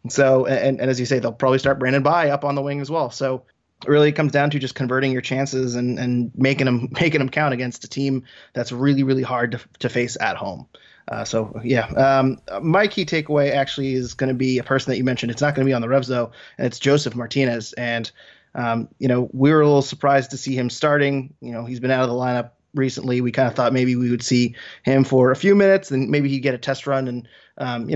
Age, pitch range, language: 20-39, 125-135 Hz, English